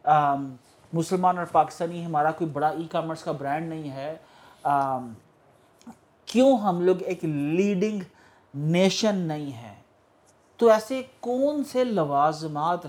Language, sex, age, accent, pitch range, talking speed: English, male, 50-69, Indian, 150-190 Hz, 115 wpm